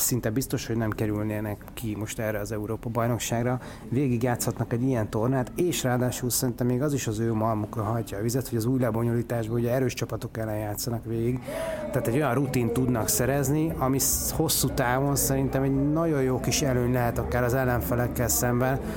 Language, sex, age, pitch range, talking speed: Hungarian, male, 30-49, 115-130 Hz, 175 wpm